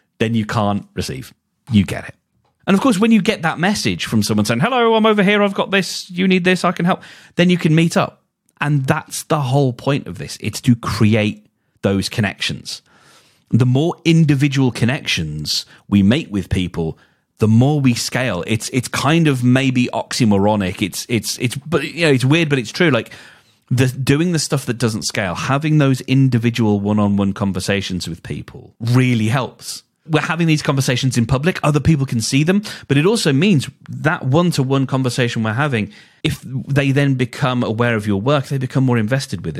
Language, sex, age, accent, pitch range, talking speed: English, male, 30-49, British, 110-155 Hz, 190 wpm